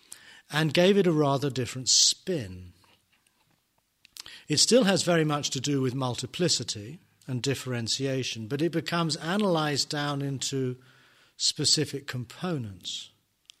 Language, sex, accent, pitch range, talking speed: English, male, British, 120-155 Hz, 115 wpm